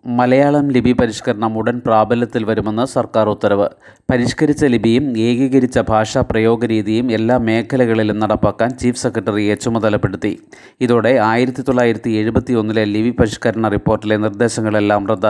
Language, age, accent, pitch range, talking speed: Malayalam, 30-49, native, 110-125 Hz, 70 wpm